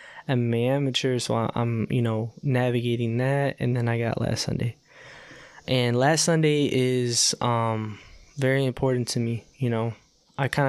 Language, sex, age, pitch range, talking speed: English, male, 10-29, 125-140 Hz, 155 wpm